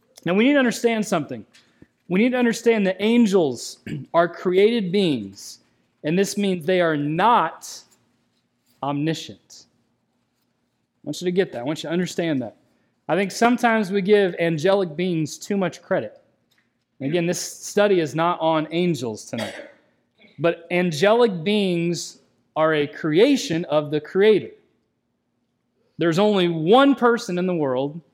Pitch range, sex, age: 165-215 Hz, male, 30-49